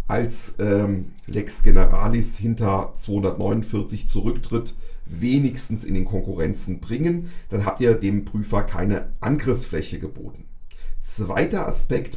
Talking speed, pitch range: 110 wpm, 100-120 Hz